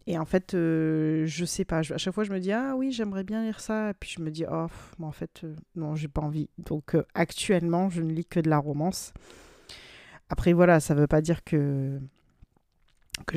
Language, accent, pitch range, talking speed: French, French, 155-195 Hz, 240 wpm